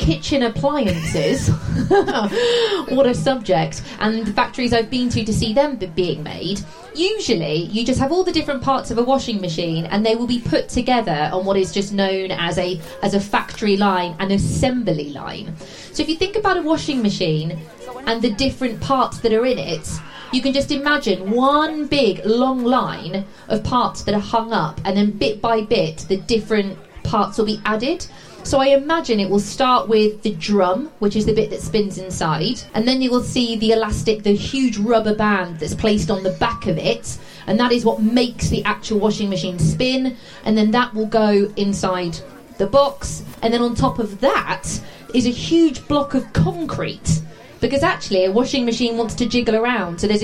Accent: British